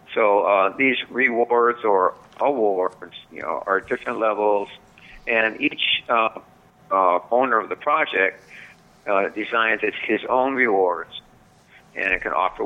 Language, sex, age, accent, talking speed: English, male, 50-69, American, 135 wpm